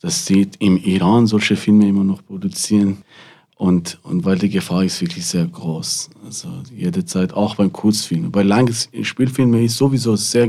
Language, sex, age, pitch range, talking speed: German, male, 40-59, 95-115 Hz, 175 wpm